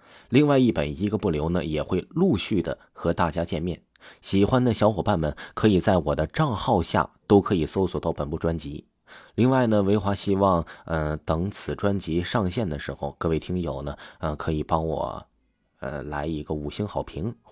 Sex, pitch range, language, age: male, 80-105 Hz, Chinese, 20-39